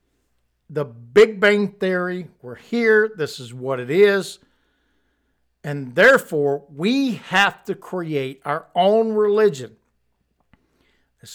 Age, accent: 60-79, American